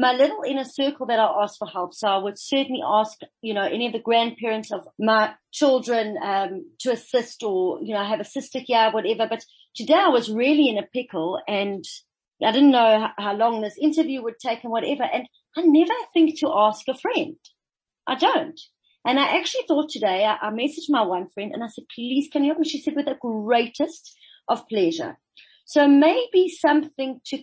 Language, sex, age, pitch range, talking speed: English, female, 30-49, 225-315 Hz, 205 wpm